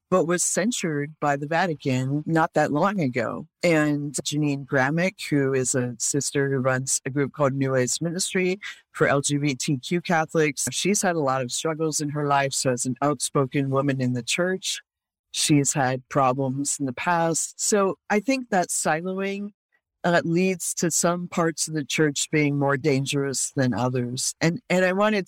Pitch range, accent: 135-175 Hz, American